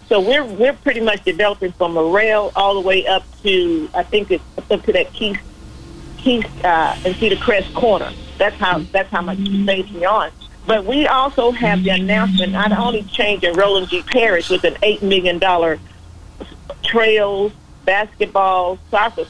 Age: 50-69